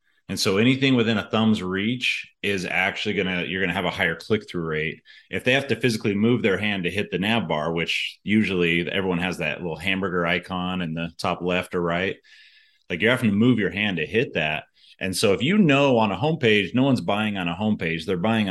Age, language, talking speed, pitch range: 30-49, English, 235 wpm, 85-110 Hz